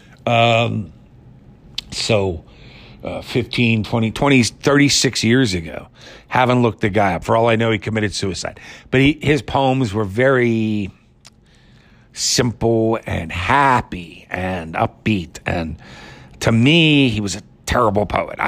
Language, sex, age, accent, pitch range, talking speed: English, male, 50-69, American, 95-125 Hz, 130 wpm